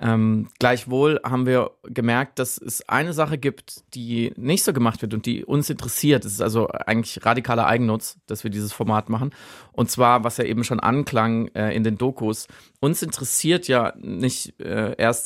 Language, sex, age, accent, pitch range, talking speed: German, male, 30-49, German, 115-135 Hz, 185 wpm